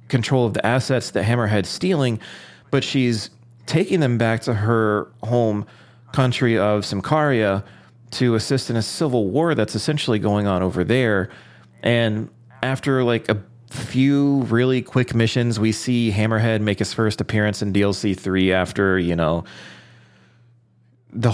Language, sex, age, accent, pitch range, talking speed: English, male, 30-49, American, 105-125 Hz, 145 wpm